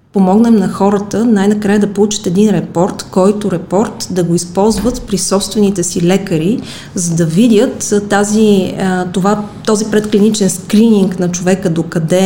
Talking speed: 135 wpm